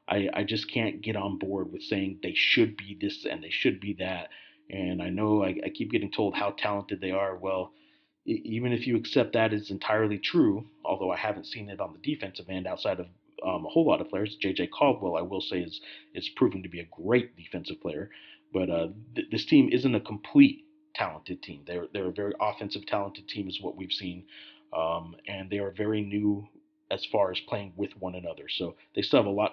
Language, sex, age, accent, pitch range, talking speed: English, male, 40-59, American, 95-135 Hz, 220 wpm